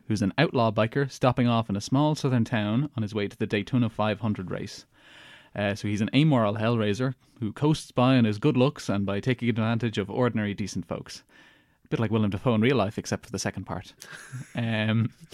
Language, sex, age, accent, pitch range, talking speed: English, male, 20-39, Irish, 105-130 Hz, 210 wpm